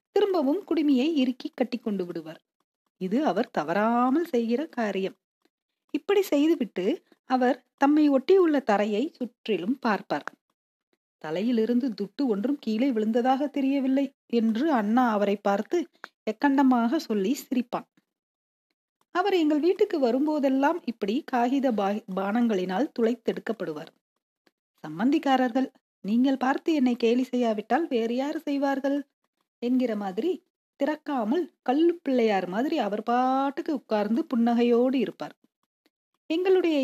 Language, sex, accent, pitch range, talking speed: Tamil, female, native, 220-285 Hz, 95 wpm